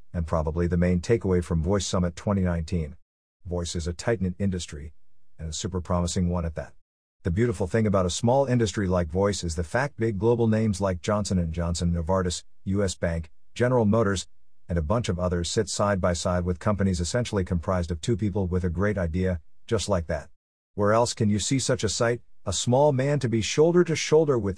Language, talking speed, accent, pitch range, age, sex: English, 195 wpm, American, 90-115 Hz, 50-69, male